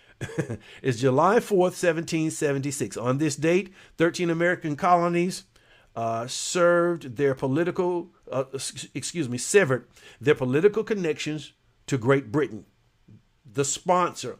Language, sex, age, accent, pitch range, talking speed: English, male, 50-69, American, 125-160 Hz, 110 wpm